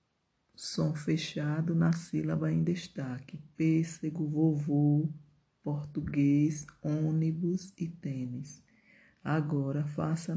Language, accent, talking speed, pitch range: Portuguese, Brazilian, 80 wpm, 150-170 Hz